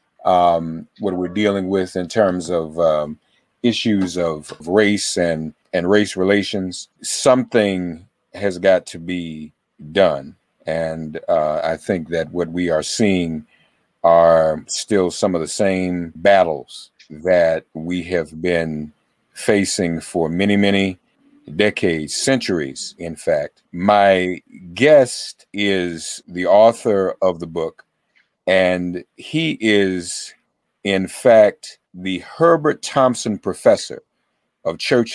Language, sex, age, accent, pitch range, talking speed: English, male, 50-69, American, 85-110 Hz, 120 wpm